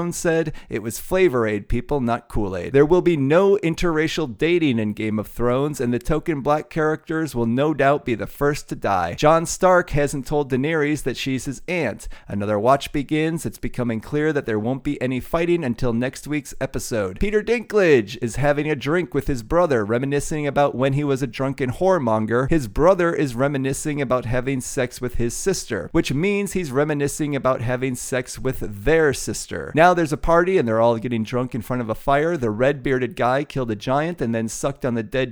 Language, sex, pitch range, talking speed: English, male, 120-155 Hz, 205 wpm